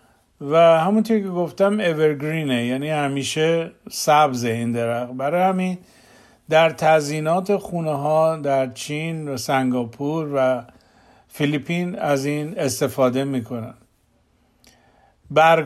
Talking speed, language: 100 wpm, Persian